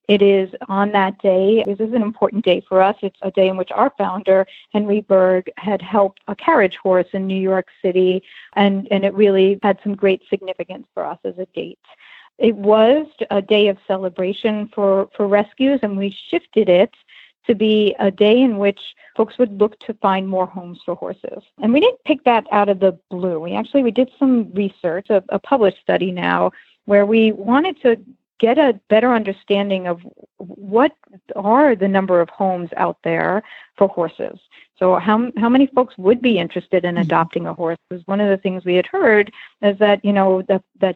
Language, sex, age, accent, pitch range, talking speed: English, female, 40-59, American, 190-225 Hz, 200 wpm